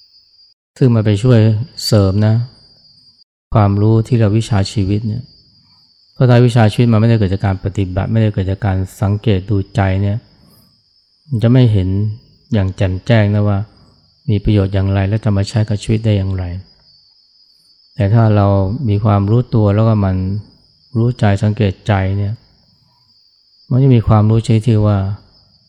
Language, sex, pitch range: Thai, male, 95-115 Hz